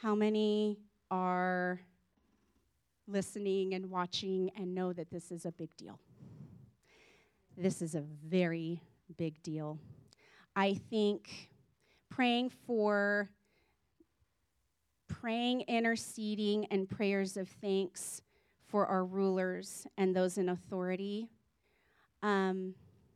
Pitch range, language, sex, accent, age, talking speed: 170-200 Hz, English, female, American, 30-49, 100 wpm